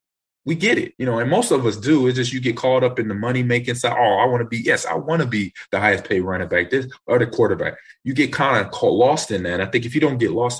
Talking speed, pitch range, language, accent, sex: 305 wpm, 105-130 Hz, English, American, male